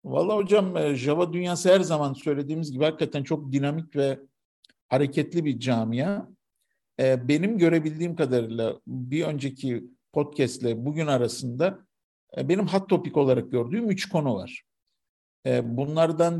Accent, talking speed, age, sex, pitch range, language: native, 120 wpm, 50-69, male, 125-160 Hz, Turkish